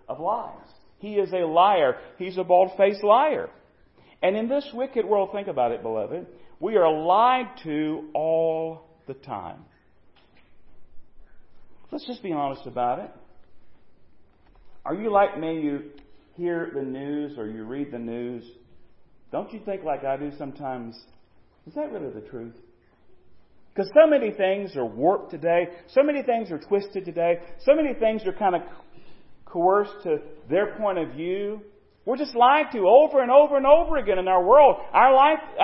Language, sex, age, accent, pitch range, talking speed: English, male, 40-59, American, 145-225 Hz, 165 wpm